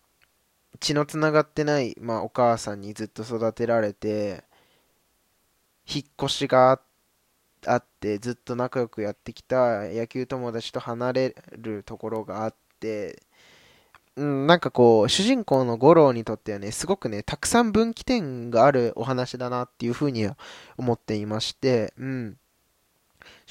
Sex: male